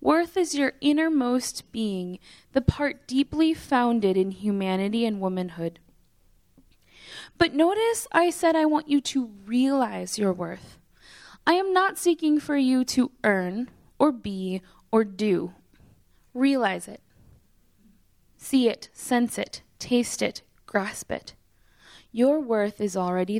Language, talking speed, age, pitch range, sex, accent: English, 130 wpm, 10-29, 195-275 Hz, female, American